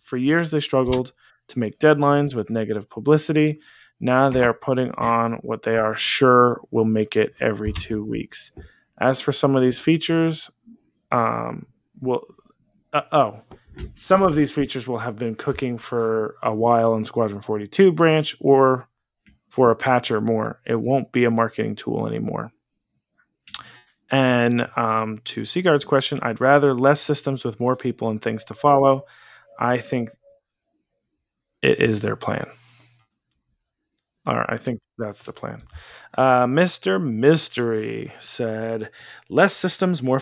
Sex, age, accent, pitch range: male, 20-39, American, 115-145 Hz